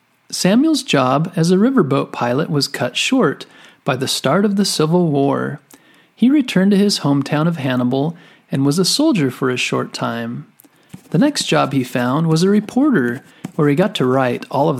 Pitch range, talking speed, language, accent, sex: 130-205 Hz, 185 wpm, English, American, male